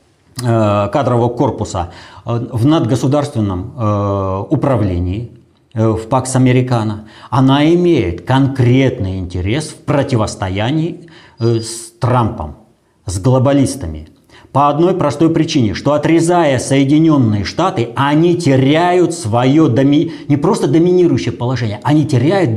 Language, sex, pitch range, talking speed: Russian, male, 115-160 Hz, 95 wpm